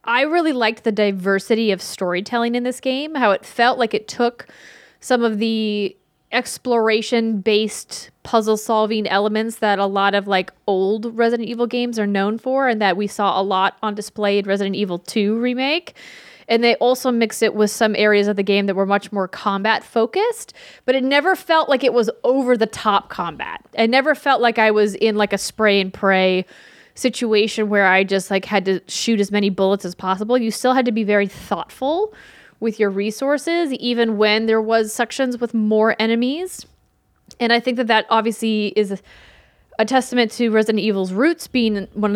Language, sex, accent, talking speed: English, female, American, 195 wpm